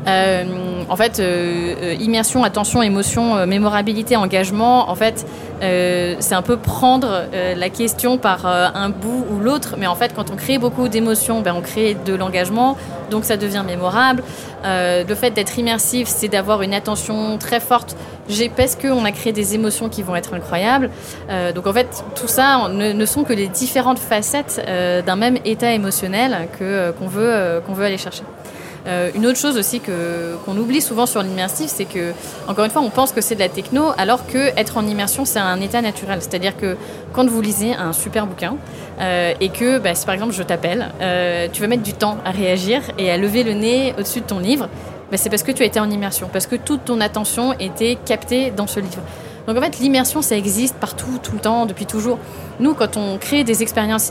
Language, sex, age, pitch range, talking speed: French, female, 20-39, 185-245 Hz, 210 wpm